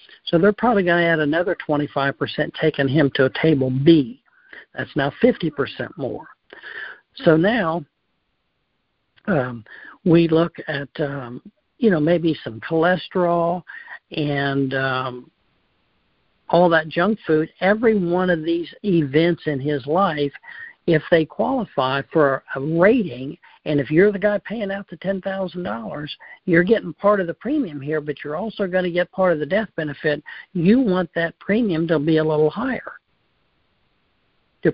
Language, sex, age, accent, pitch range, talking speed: English, male, 60-79, American, 150-195 Hz, 150 wpm